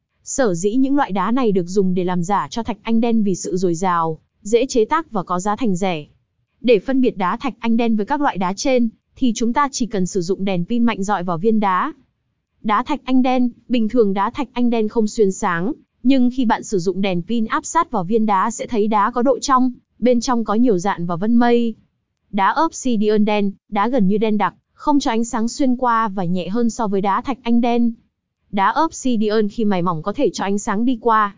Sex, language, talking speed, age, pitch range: female, Vietnamese, 245 wpm, 20-39, 205-255 Hz